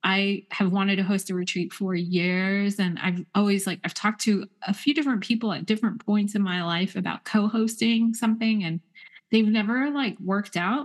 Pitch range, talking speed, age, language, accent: 170-210 Hz, 195 wpm, 30-49, English, American